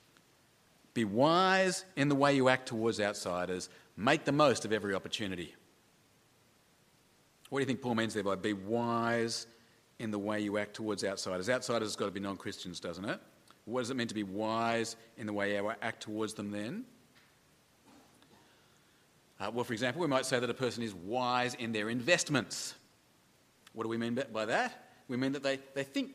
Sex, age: male, 40-59